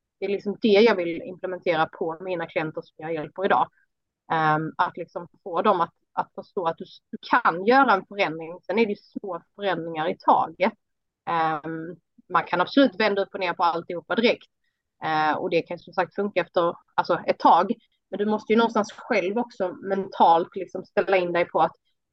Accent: native